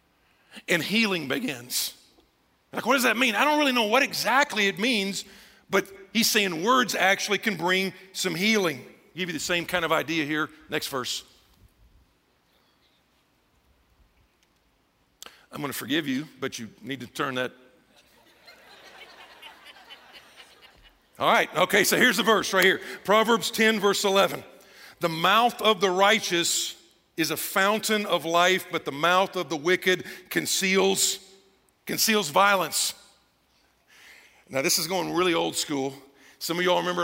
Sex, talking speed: male, 145 wpm